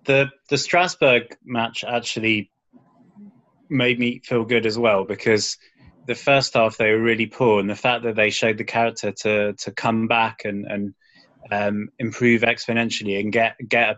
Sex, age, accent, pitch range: male, 20-39, British, 105-120 Hz